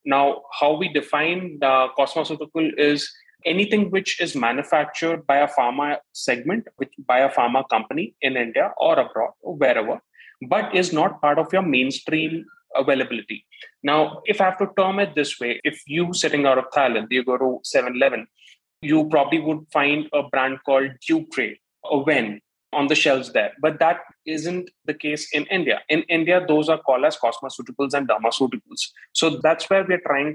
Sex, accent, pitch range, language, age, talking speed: male, Indian, 135-180 Hz, English, 20-39, 175 wpm